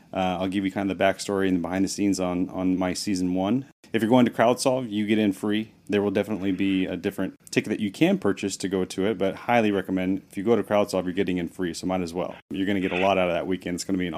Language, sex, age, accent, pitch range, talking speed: English, male, 30-49, American, 95-105 Hz, 310 wpm